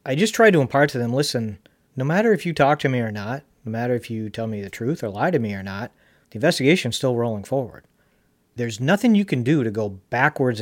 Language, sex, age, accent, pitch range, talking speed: English, male, 40-59, American, 110-140 Hz, 255 wpm